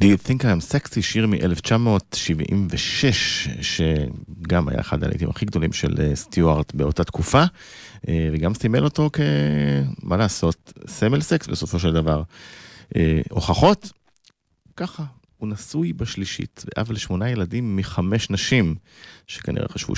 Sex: male